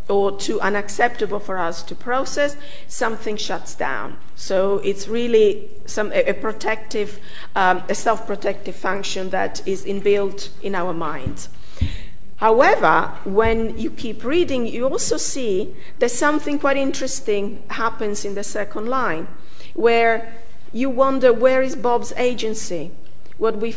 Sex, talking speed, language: female, 130 wpm, English